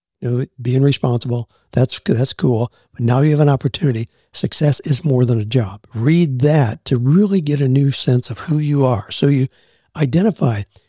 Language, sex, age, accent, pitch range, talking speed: English, male, 60-79, American, 120-145 Hz, 175 wpm